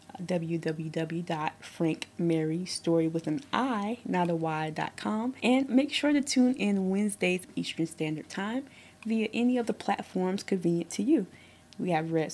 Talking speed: 130 wpm